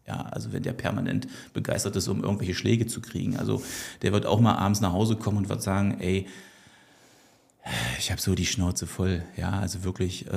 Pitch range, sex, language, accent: 95-115 Hz, male, German, German